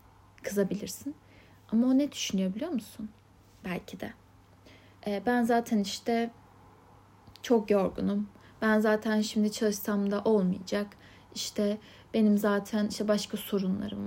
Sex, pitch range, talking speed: female, 200-225 Hz, 115 wpm